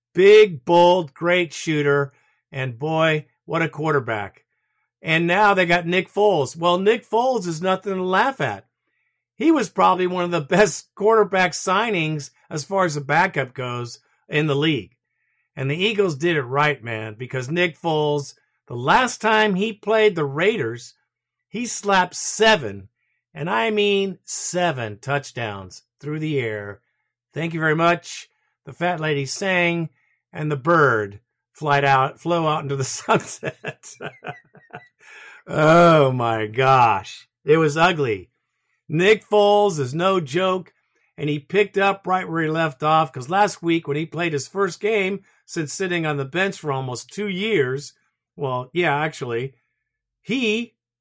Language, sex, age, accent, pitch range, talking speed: English, male, 50-69, American, 140-185 Hz, 150 wpm